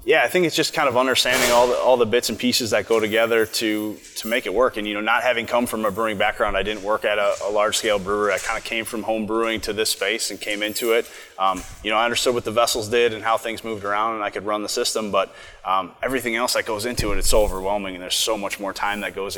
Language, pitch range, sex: English, 95-115 Hz, male